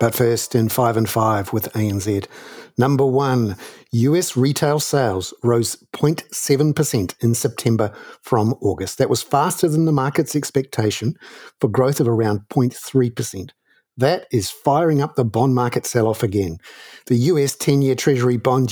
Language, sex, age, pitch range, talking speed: English, male, 50-69, 115-150 Hz, 145 wpm